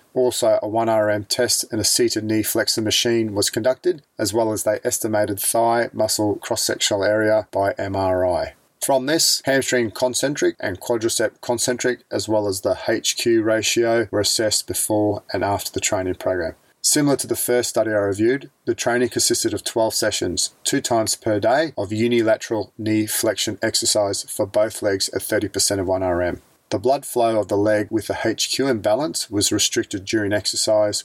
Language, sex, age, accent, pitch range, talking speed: English, male, 40-59, Australian, 105-120 Hz, 170 wpm